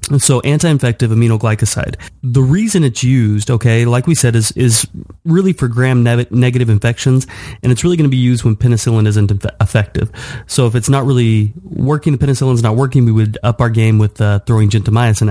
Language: English